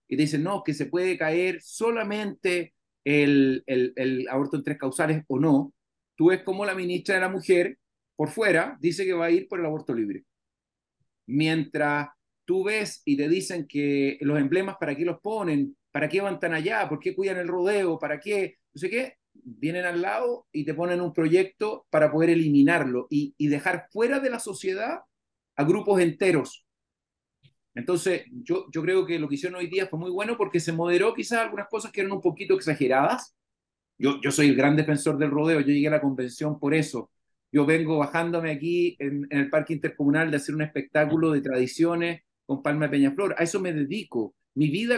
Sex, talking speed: male, 200 wpm